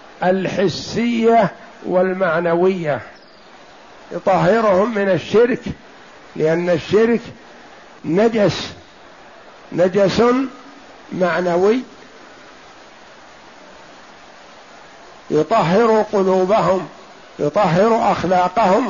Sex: male